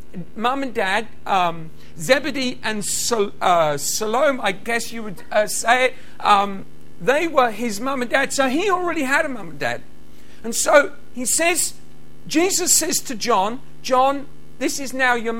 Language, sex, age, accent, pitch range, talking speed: English, male, 50-69, British, 230-280 Hz, 170 wpm